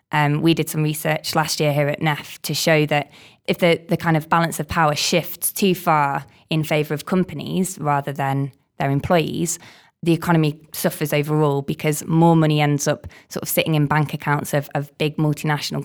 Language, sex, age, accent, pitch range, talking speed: English, female, 20-39, British, 150-170 Hz, 195 wpm